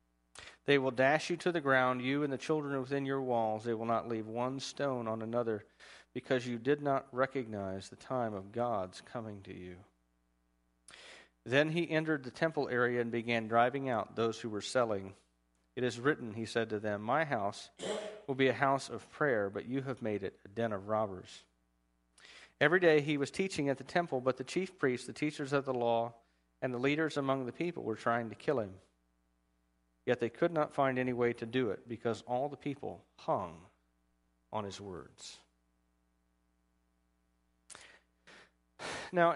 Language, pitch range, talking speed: English, 105-140 Hz, 180 wpm